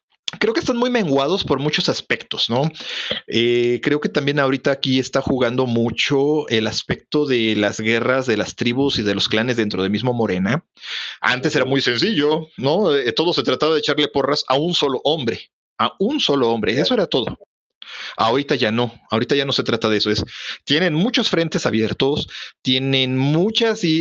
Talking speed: 185 wpm